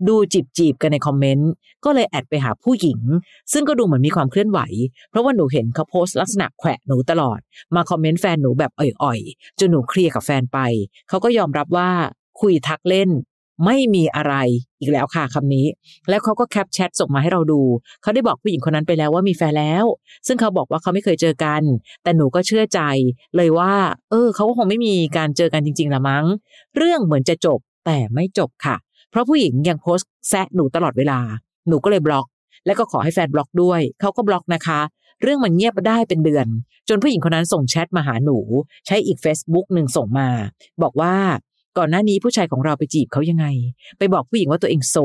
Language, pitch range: Thai, 145-195 Hz